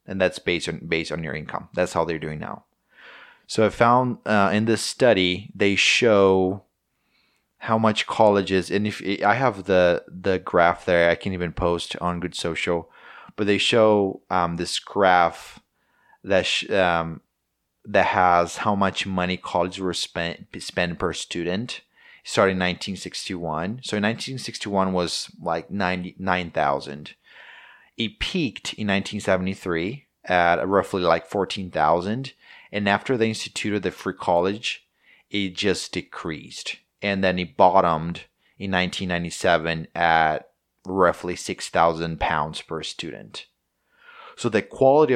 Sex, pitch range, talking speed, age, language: male, 90-105 Hz, 140 wpm, 30-49, English